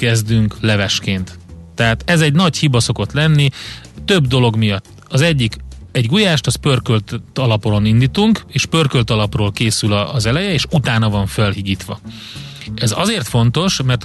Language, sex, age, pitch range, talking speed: Hungarian, male, 30-49, 110-140 Hz, 145 wpm